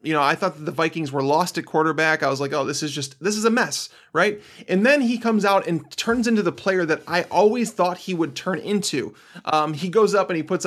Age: 20-39